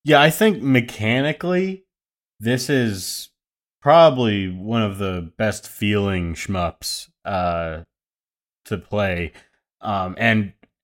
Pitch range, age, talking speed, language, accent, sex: 95-125 Hz, 20-39, 100 wpm, English, American, male